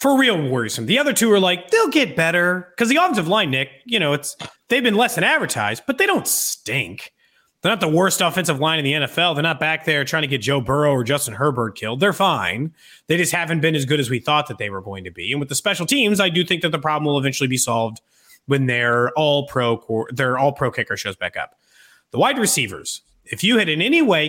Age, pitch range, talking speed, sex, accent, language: 30-49, 135-220 Hz, 255 wpm, male, American, English